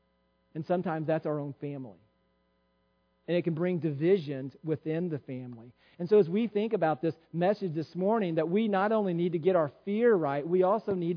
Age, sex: 40-59, male